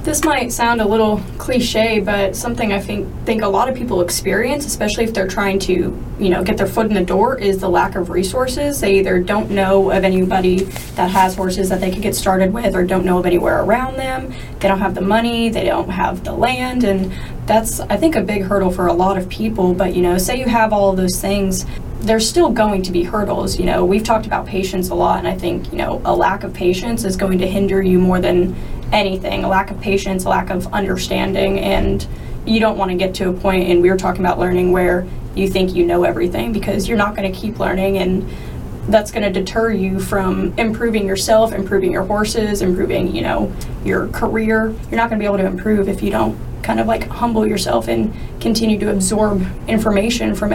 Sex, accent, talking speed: female, American, 230 wpm